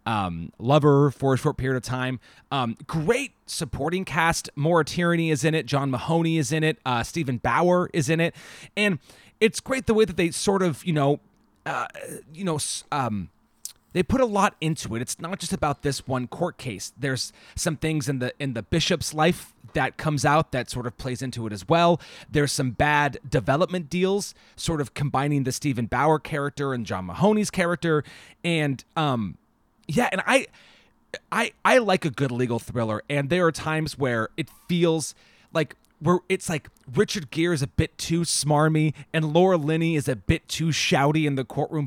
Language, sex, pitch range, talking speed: English, male, 130-170 Hz, 190 wpm